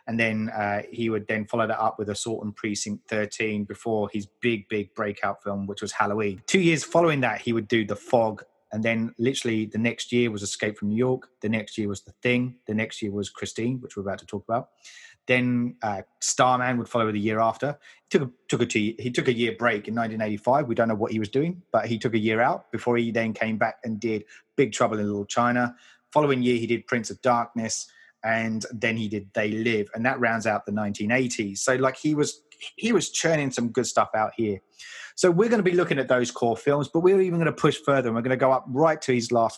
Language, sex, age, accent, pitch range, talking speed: English, male, 30-49, British, 110-130 Hz, 240 wpm